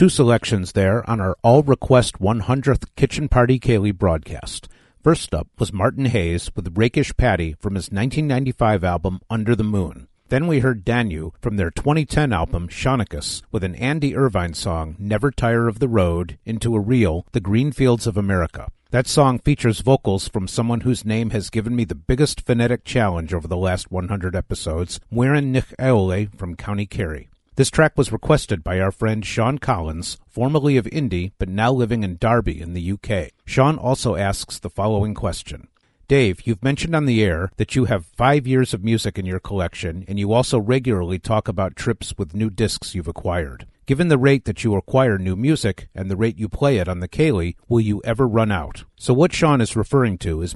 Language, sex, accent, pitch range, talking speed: English, male, American, 95-125 Hz, 190 wpm